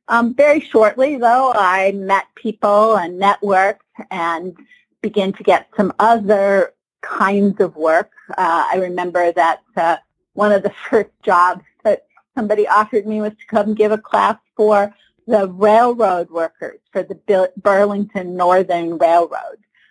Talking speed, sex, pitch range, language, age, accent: 140 wpm, female, 175-215 Hz, English, 50-69, American